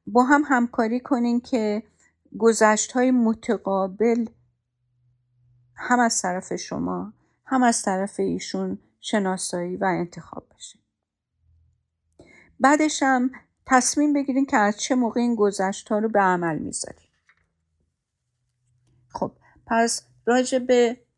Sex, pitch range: female, 175-230 Hz